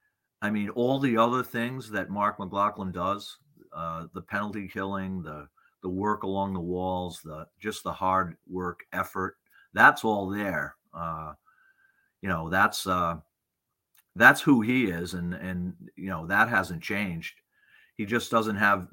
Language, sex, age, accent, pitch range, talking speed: English, male, 50-69, American, 95-125 Hz, 155 wpm